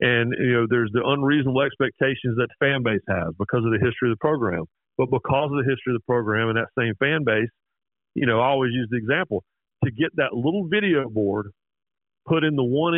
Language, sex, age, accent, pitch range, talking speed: English, male, 50-69, American, 120-155 Hz, 225 wpm